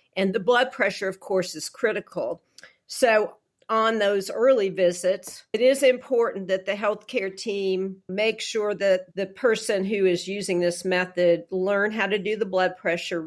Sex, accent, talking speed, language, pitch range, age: female, American, 165 wpm, English, 180-215 Hz, 50-69